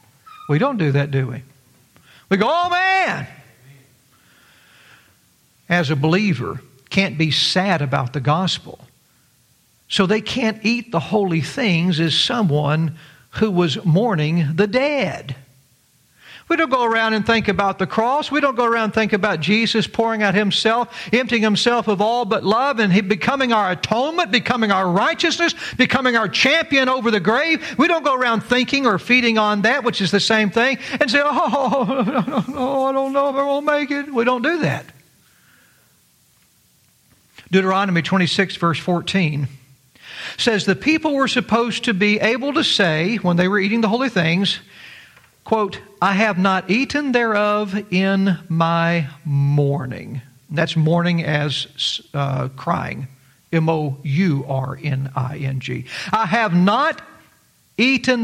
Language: English